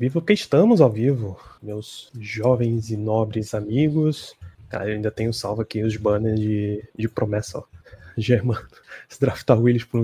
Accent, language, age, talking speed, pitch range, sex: Brazilian, Portuguese, 20-39, 165 wpm, 110-140 Hz, male